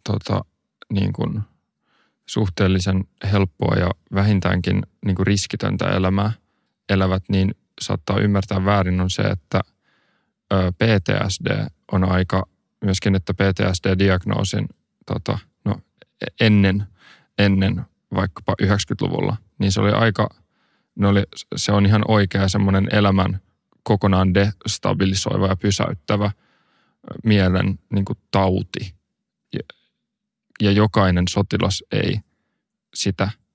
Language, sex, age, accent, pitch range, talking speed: Finnish, male, 20-39, native, 95-105 Hz, 100 wpm